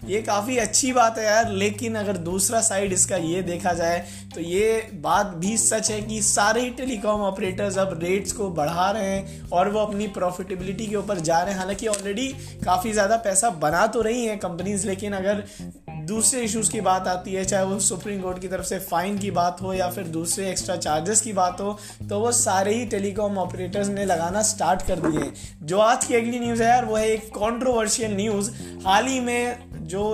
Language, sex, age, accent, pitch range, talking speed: Hindi, male, 20-39, native, 185-220 Hz, 210 wpm